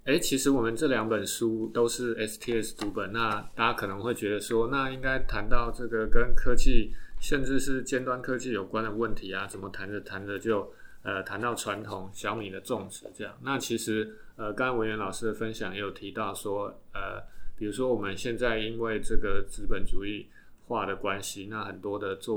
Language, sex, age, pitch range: Chinese, male, 20-39, 105-120 Hz